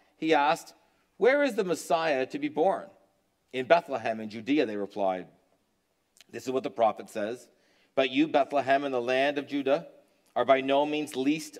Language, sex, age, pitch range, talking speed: English, male, 40-59, 105-135 Hz, 175 wpm